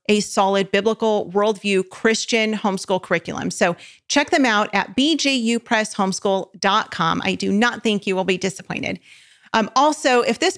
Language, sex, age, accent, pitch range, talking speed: English, female, 40-59, American, 195-230 Hz, 140 wpm